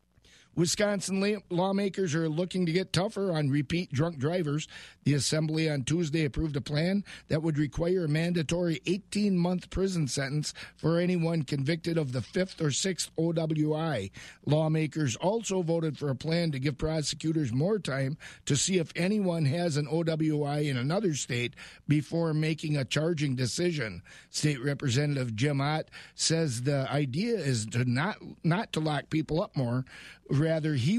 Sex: male